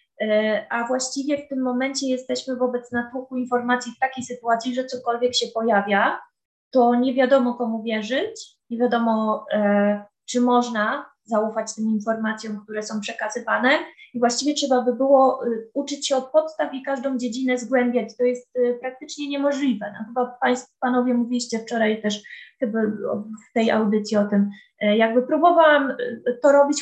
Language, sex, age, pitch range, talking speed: Polish, female, 20-39, 215-260 Hz, 145 wpm